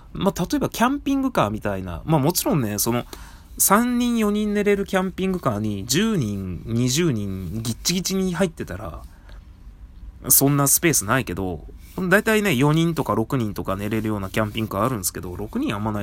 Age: 20-39